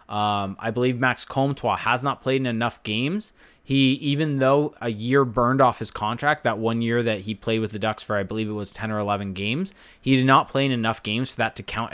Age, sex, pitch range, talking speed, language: 20-39, male, 110-135 Hz, 245 wpm, English